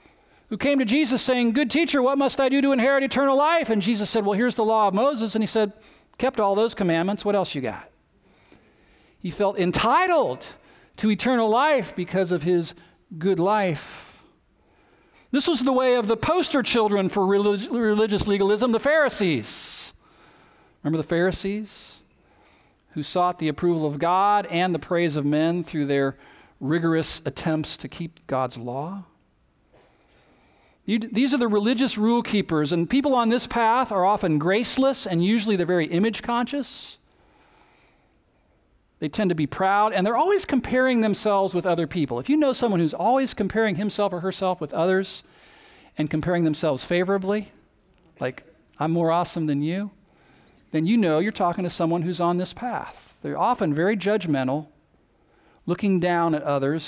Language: English